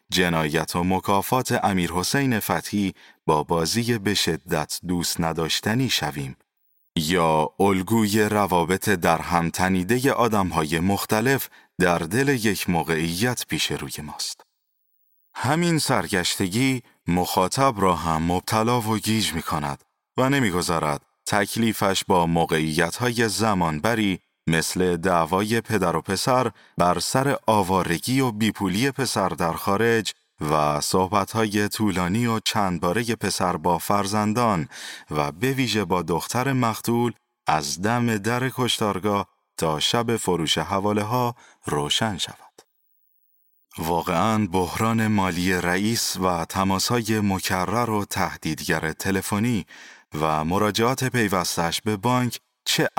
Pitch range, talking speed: 85-115 Hz, 115 wpm